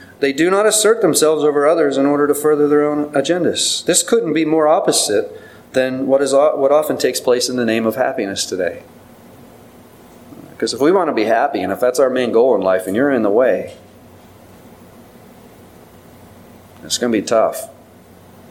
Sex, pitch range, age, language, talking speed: male, 125-155 Hz, 40-59, English, 185 wpm